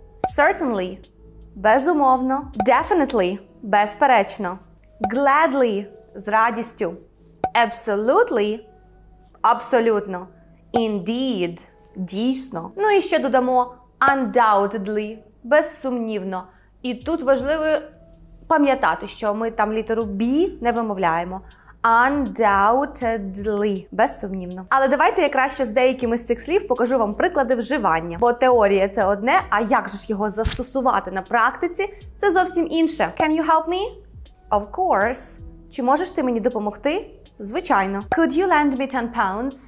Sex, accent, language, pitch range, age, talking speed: female, native, Ukrainian, 210-290 Hz, 20-39, 130 wpm